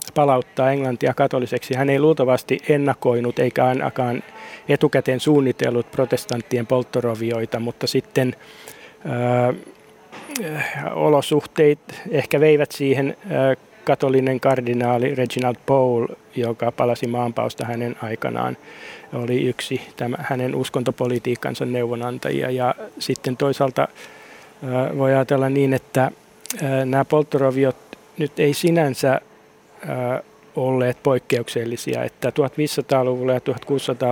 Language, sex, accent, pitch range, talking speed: Finnish, male, native, 125-140 Hz, 95 wpm